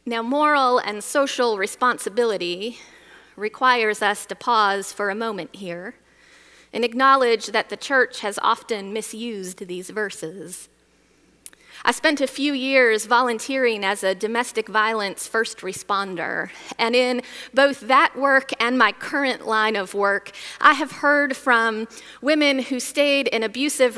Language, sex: English, female